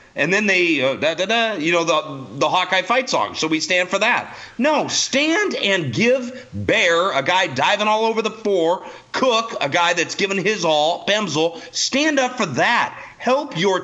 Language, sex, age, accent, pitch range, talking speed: English, male, 40-59, American, 150-220 Hz, 195 wpm